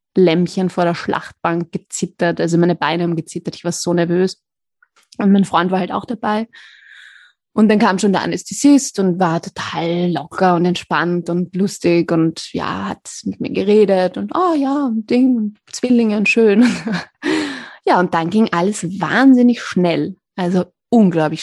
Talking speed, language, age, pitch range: 160 wpm, German, 20-39, 175-225 Hz